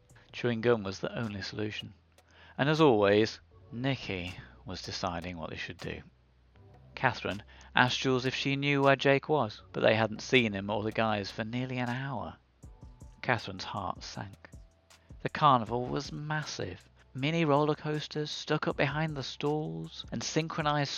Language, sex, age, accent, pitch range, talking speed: English, male, 40-59, British, 95-140 Hz, 155 wpm